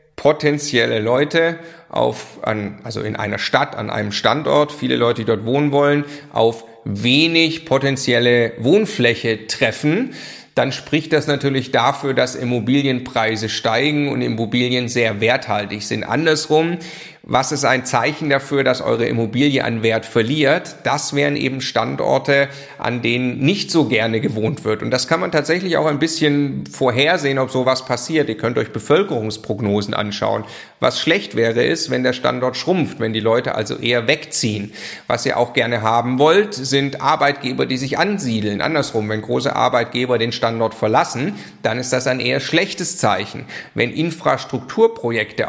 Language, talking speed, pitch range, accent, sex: German, 155 wpm, 115-145 Hz, German, male